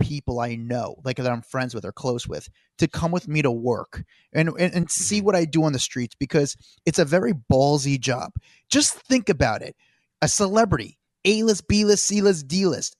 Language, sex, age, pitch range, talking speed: English, male, 30-49, 130-180 Hz, 215 wpm